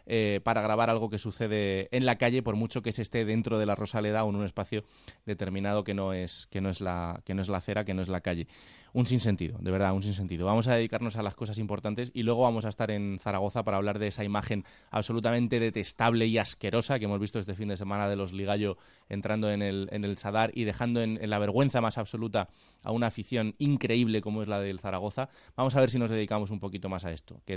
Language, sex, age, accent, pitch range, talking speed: Spanish, male, 20-39, Spanish, 100-115 Hz, 250 wpm